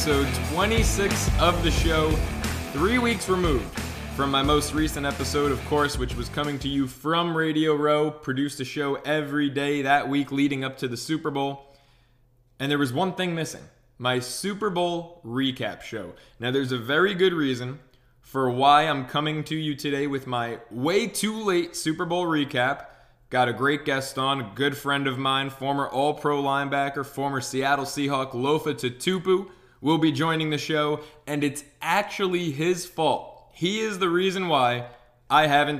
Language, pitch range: English, 130-160 Hz